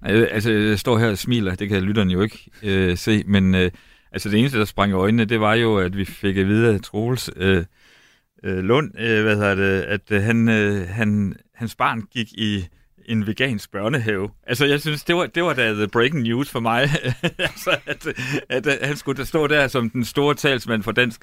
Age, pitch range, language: 60-79, 105-135 Hz, Danish